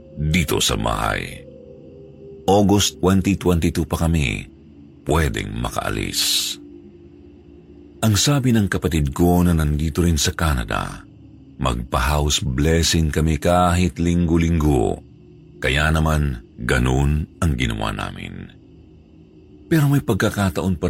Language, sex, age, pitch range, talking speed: Filipino, male, 50-69, 75-95 Hz, 100 wpm